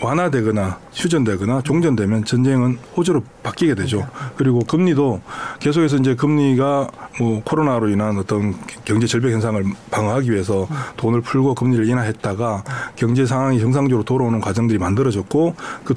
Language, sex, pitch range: Korean, male, 115-150 Hz